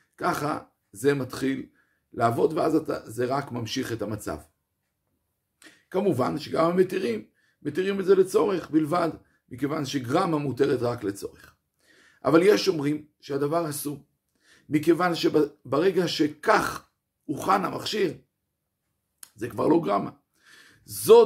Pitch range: 125-165 Hz